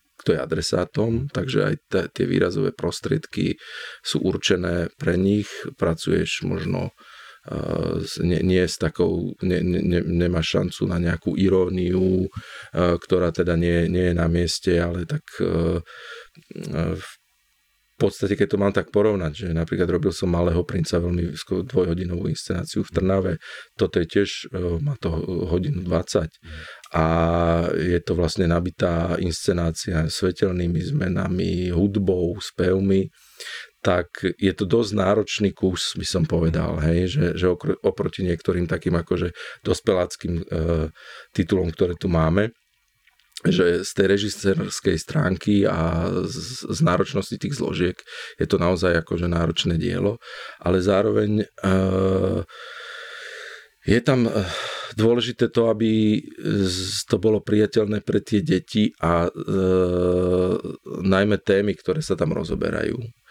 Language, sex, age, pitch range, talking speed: Slovak, male, 40-59, 85-100 Hz, 130 wpm